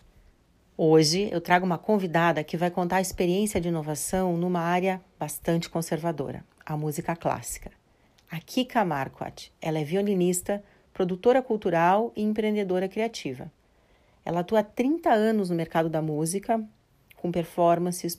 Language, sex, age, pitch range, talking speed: Portuguese, female, 40-59, 165-200 Hz, 135 wpm